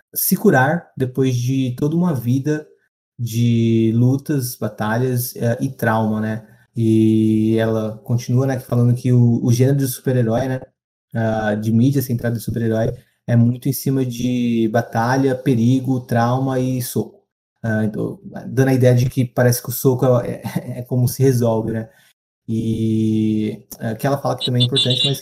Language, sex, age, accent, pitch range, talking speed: Portuguese, male, 20-39, Brazilian, 115-130 Hz, 165 wpm